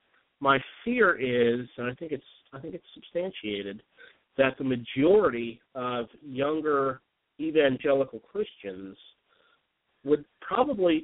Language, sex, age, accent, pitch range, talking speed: English, male, 50-69, American, 120-170 Hz, 110 wpm